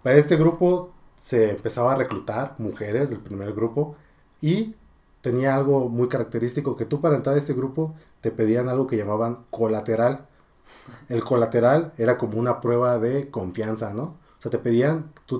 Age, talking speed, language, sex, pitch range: 30-49, 170 wpm, Spanish, male, 105-135 Hz